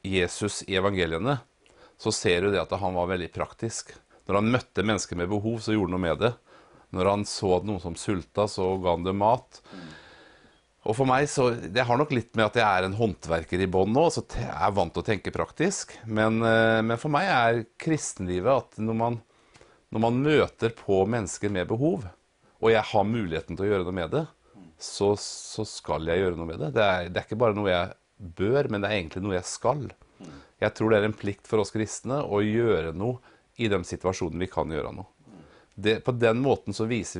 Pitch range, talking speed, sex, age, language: 95-115 Hz, 210 wpm, male, 40-59, English